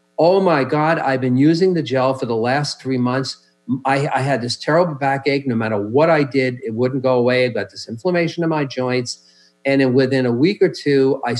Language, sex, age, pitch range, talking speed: English, male, 50-69, 125-155 Hz, 225 wpm